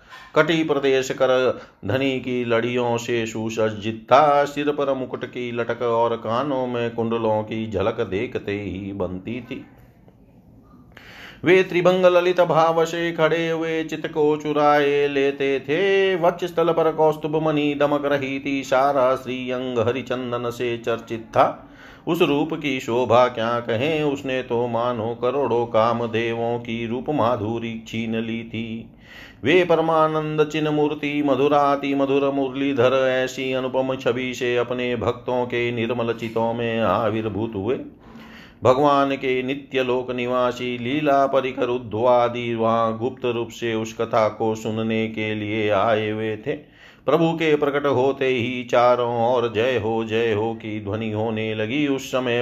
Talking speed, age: 140 wpm, 40-59